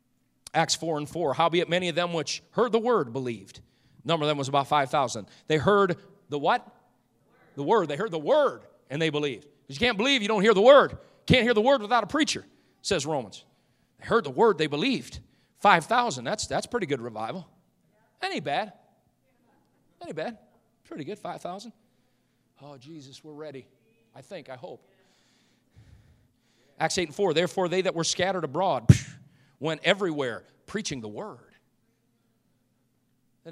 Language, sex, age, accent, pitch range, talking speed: English, male, 40-59, American, 140-205 Hz, 170 wpm